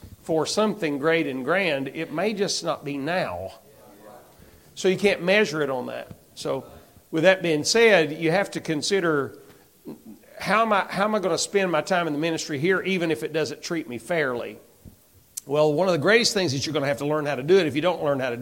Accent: American